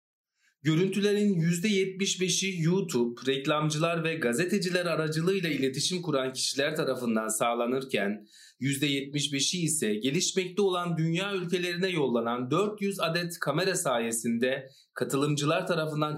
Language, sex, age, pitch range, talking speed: Turkish, male, 40-59, 135-185 Hz, 95 wpm